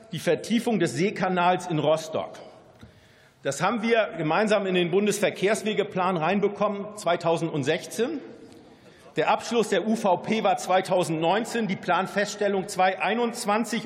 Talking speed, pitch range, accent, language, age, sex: 105 wpm, 165-205 Hz, German, German, 50-69, male